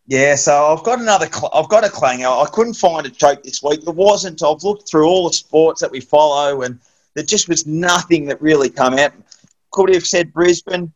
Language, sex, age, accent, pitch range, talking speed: English, male, 30-49, Australian, 135-175 Hz, 220 wpm